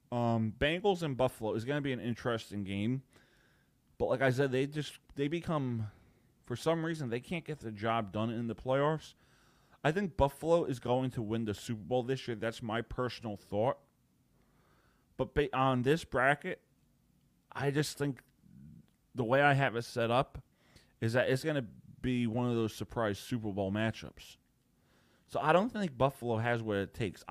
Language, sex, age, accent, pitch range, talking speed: English, male, 30-49, American, 115-145 Hz, 180 wpm